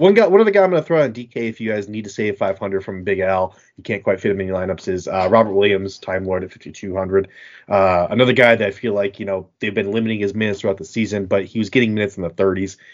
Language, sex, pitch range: English, male, 95-125 Hz